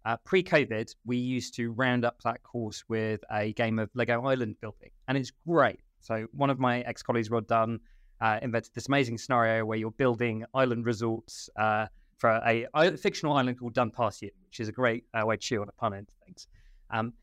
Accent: British